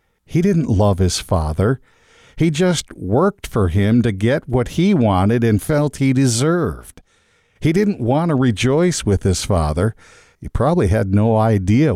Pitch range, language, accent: 95-125 Hz, English, American